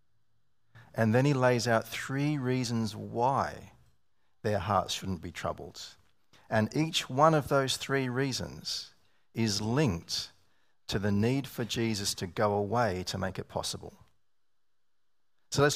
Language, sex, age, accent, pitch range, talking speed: English, male, 40-59, Australian, 100-120 Hz, 135 wpm